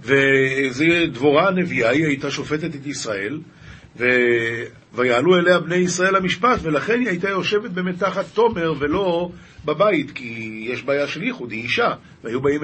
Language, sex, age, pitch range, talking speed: Hebrew, male, 50-69, 135-165 Hz, 140 wpm